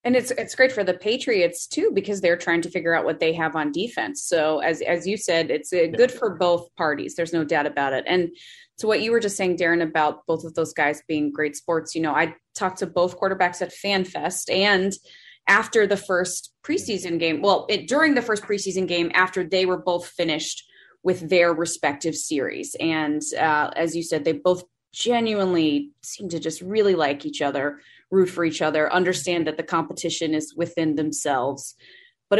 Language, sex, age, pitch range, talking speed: English, female, 20-39, 165-215 Hz, 205 wpm